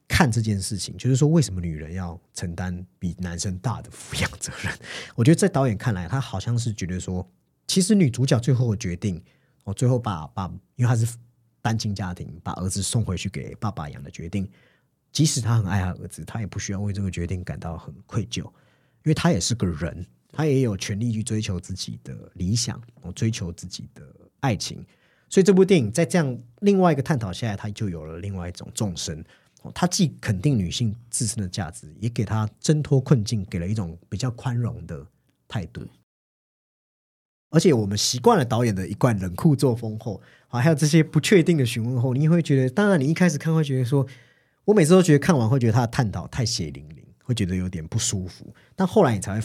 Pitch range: 95-135 Hz